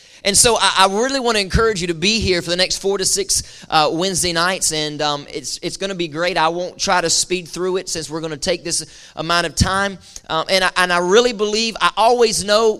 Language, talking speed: English, 235 wpm